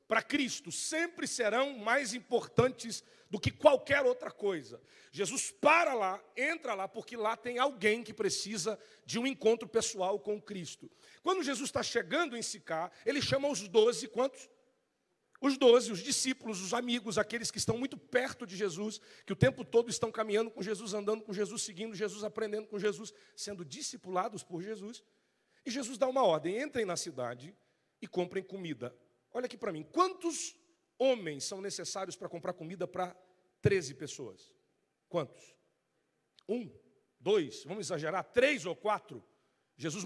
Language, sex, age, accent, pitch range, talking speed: Portuguese, male, 40-59, Brazilian, 185-255 Hz, 160 wpm